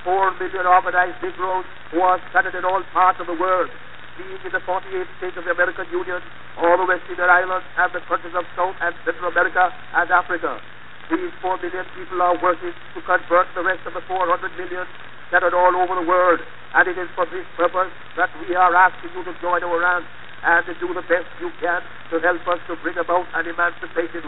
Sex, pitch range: male, 175-185 Hz